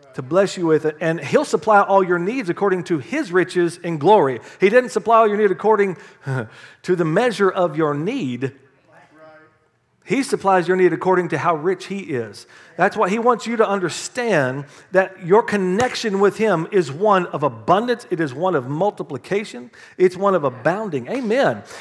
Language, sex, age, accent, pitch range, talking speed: English, male, 40-59, American, 165-215 Hz, 180 wpm